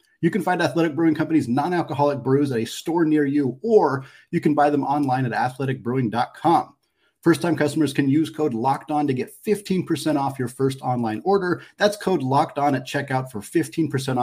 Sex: male